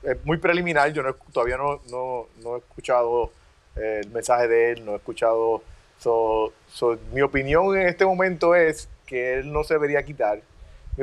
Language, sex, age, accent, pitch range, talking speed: Spanish, male, 30-49, Venezuelan, 130-195 Hz, 180 wpm